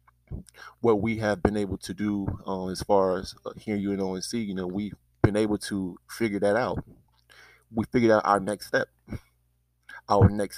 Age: 20-39